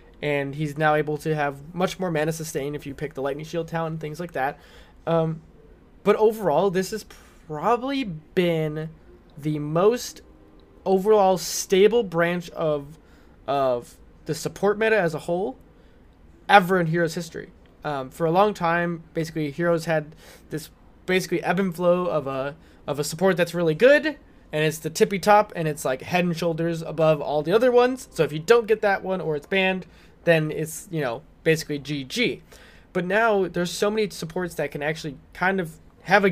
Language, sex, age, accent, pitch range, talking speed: English, male, 20-39, American, 150-185 Hz, 185 wpm